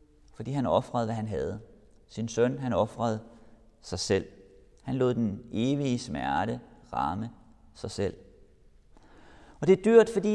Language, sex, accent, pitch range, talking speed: Danish, male, native, 115-150 Hz, 145 wpm